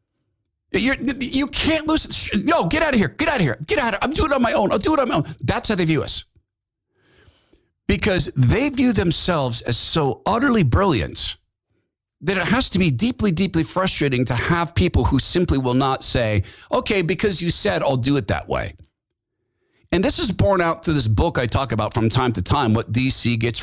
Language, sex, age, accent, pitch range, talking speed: English, male, 50-69, American, 110-165 Hz, 220 wpm